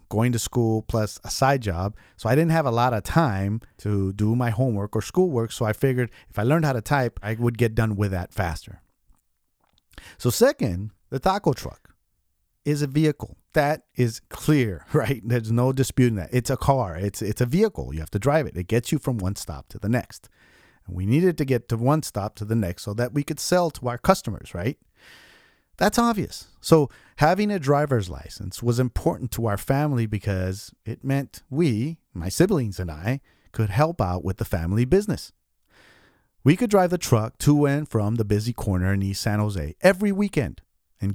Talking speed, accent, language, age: 205 wpm, American, English, 40-59